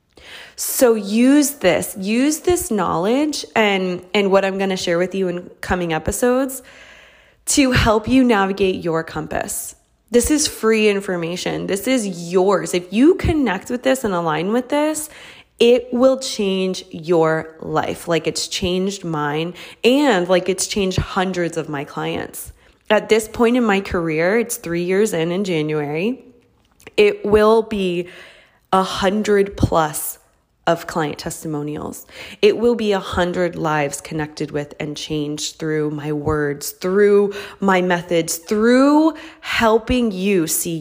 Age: 20-39